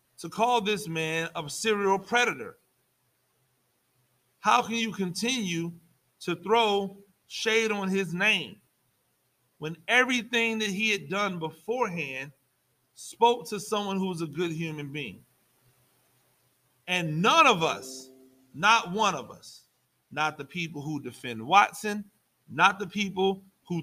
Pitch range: 155-205 Hz